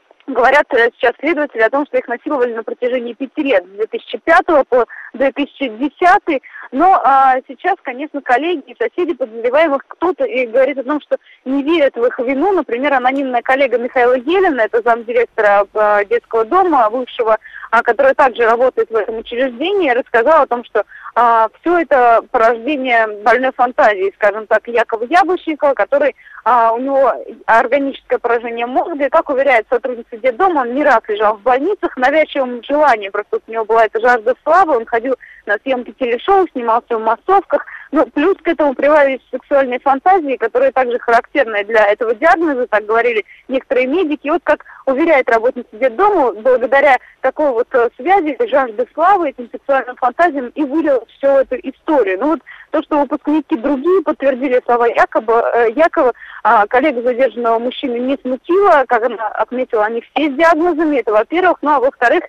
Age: 20-39